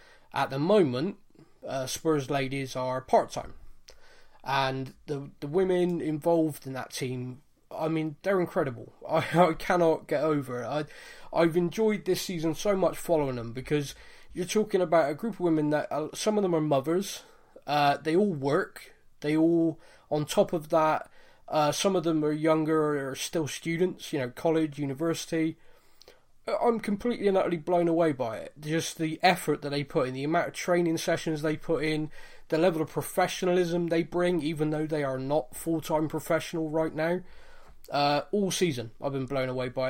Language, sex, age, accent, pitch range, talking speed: English, male, 20-39, British, 140-175 Hz, 180 wpm